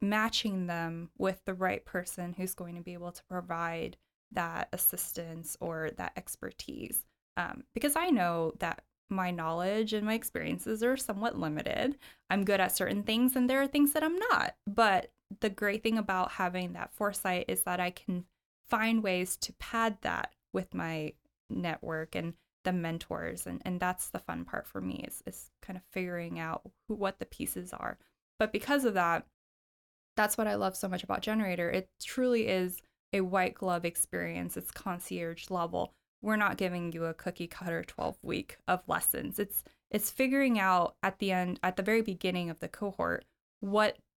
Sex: female